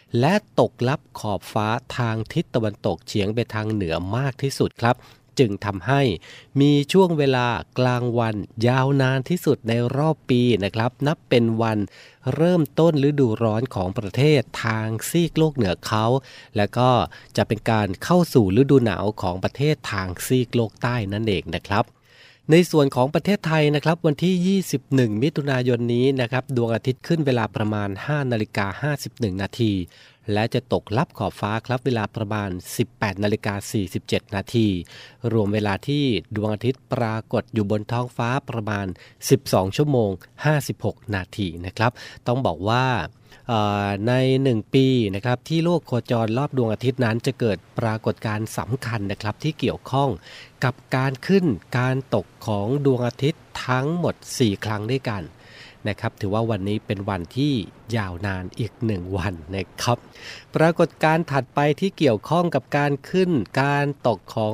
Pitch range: 110-135 Hz